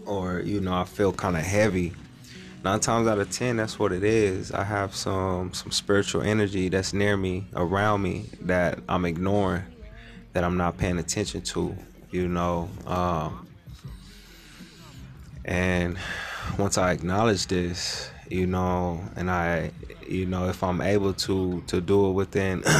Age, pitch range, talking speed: 20-39, 90-100 Hz, 155 wpm